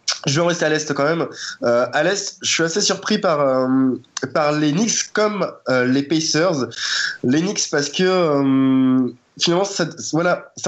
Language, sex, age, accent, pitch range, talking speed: French, male, 20-39, French, 120-155 Hz, 180 wpm